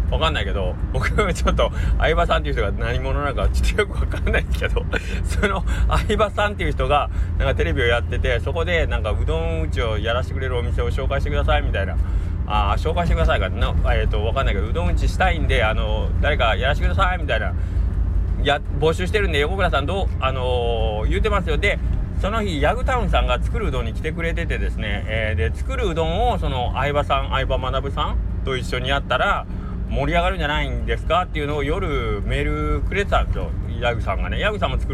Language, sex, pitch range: Japanese, male, 85-100 Hz